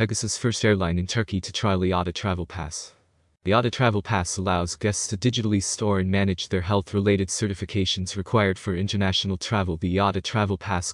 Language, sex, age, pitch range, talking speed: English, male, 20-39, 95-105 Hz, 175 wpm